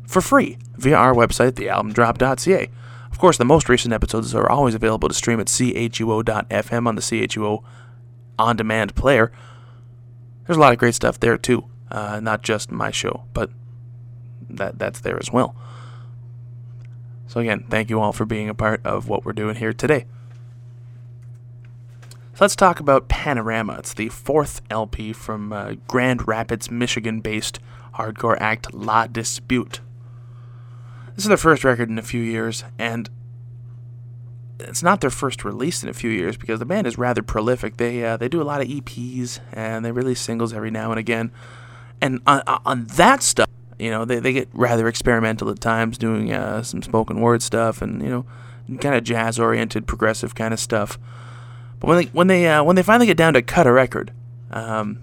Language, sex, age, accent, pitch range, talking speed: English, male, 20-39, American, 115-125 Hz, 180 wpm